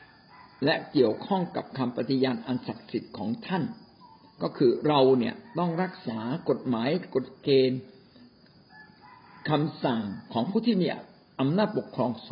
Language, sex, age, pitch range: Thai, male, 60-79, 125-175 Hz